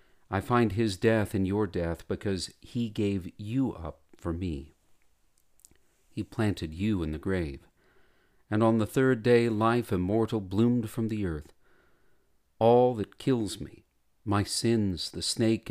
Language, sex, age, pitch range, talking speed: English, male, 50-69, 85-110 Hz, 150 wpm